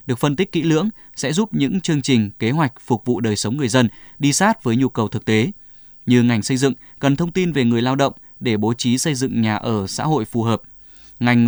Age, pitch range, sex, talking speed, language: 20-39, 115-155 Hz, male, 250 wpm, Vietnamese